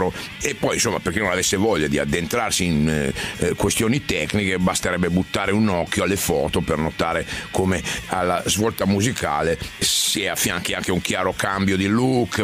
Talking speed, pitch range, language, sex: 165 wpm, 90-105 Hz, Italian, male